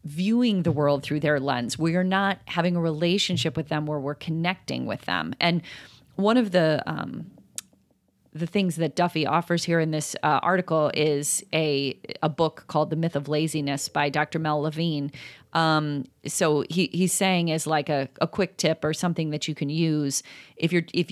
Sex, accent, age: female, American, 30-49